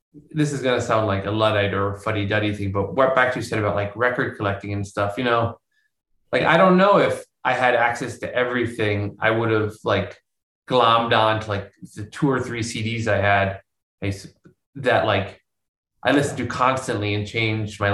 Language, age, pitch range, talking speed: English, 20-39, 105-130 Hz, 200 wpm